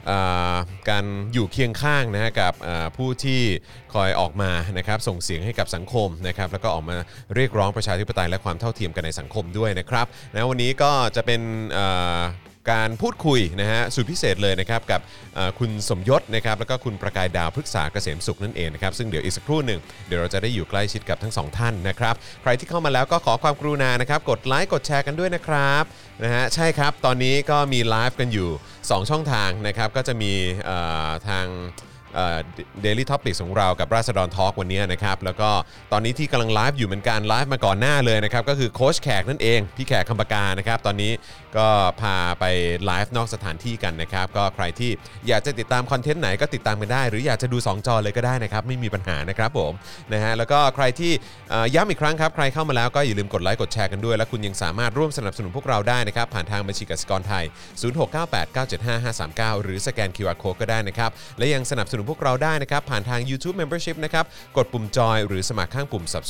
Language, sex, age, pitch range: Thai, male, 30-49, 95-125 Hz